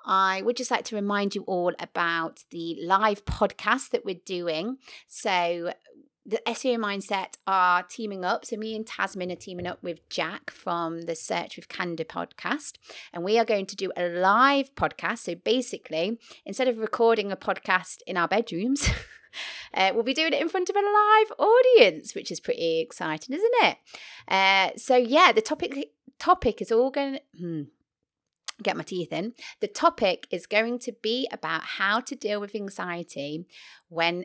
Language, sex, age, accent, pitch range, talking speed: English, female, 30-49, British, 170-235 Hz, 175 wpm